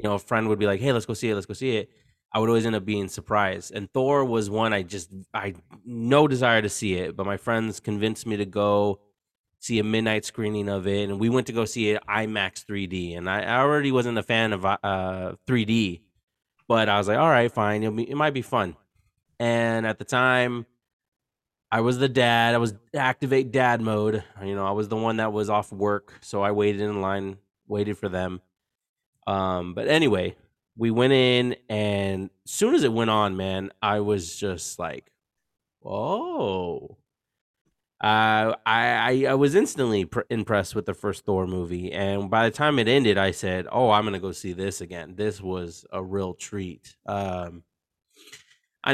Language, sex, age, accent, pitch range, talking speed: English, male, 20-39, American, 100-120 Hz, 200 wpm